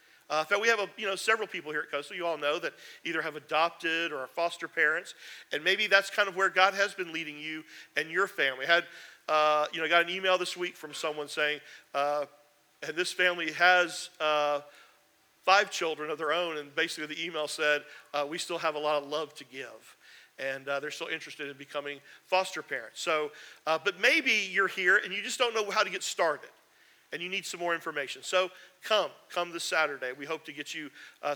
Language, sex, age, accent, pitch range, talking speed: English, male, 40-59, American, 150-200 Hz, 220 wpm